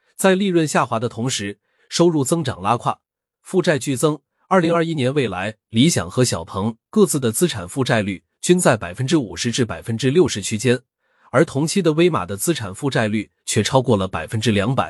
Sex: male